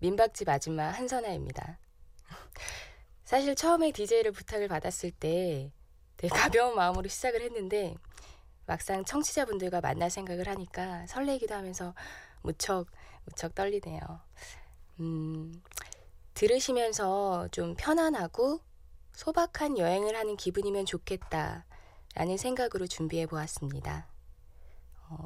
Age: 20-39